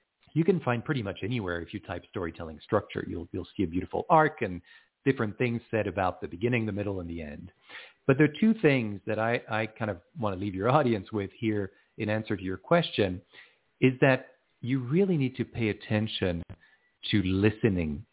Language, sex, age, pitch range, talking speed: English, male, 40-59, 90-130 Hz, 200 wpm